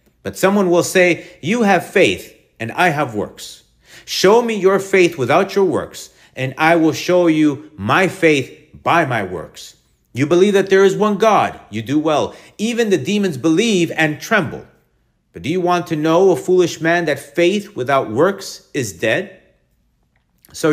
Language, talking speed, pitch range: English, 175 wpm, 140-185 Hz